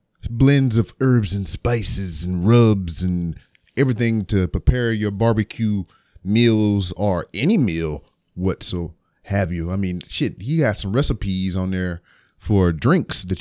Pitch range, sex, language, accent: 90-115 Hz, male, English, American